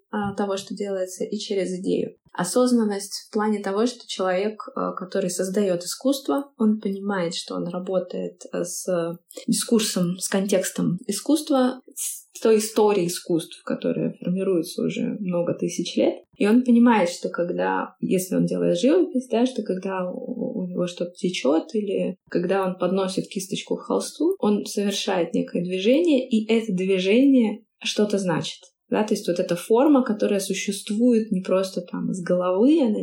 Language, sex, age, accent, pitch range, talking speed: Russian, female, 20-39, native, 185-235 Hz, 145 wpm